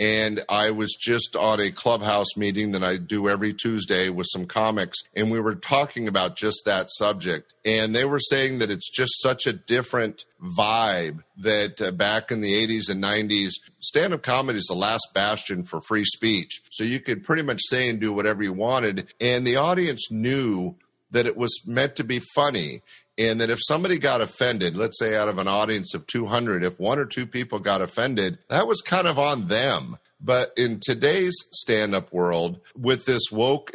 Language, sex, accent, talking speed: English, male, American, 195 wpm